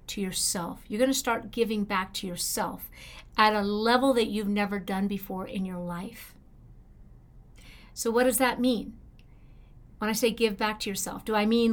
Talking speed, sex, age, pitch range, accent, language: 185 wpm, female, 50-69, 200-245 Hz, American, English